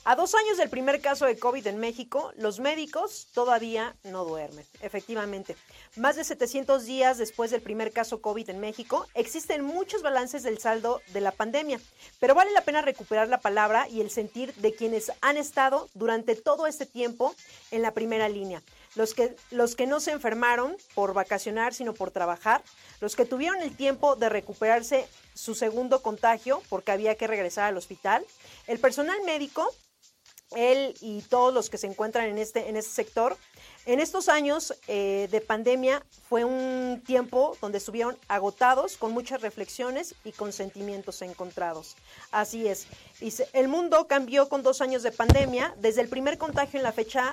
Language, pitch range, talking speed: Spanish, 215-270 Hz, 175 wpm